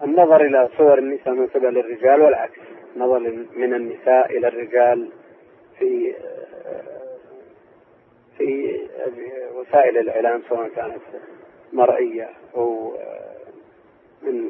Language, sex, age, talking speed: Arabic, male, 40-59, 85 wpm